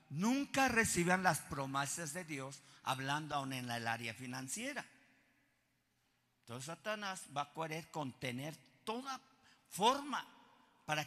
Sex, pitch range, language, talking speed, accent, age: male, 170-235 Hz, Spanish, 115 wpm, Mexican, 50-69